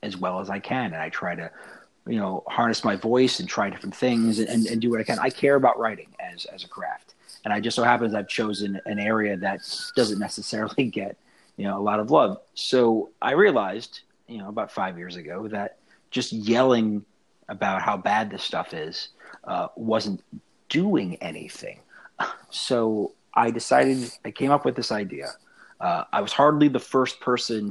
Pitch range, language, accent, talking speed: 105-125 Hz, English, American, 195 wpm